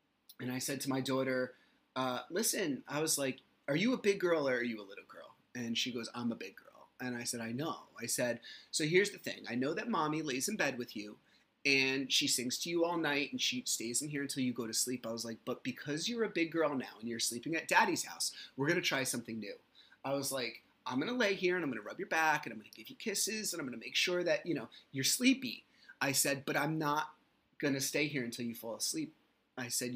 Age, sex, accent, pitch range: 30-49, male, American, 125-170 Hz